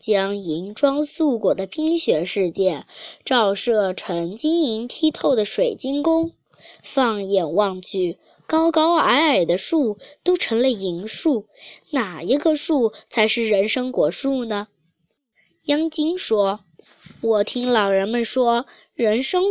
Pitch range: 200-310 Hz